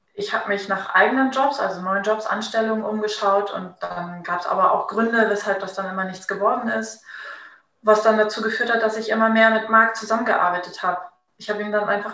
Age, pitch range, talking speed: 20-39, 195-230 Hz, 210 wpm